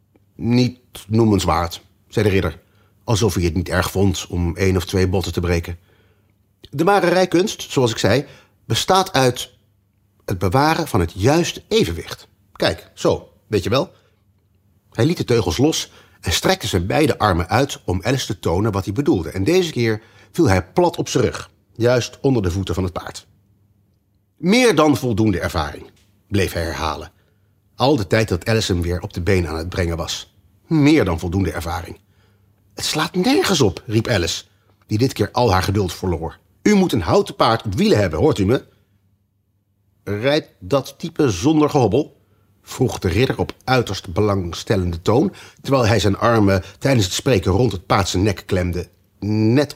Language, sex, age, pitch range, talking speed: Dutch, male, 40-59, 95-120 Hz, 175 wpm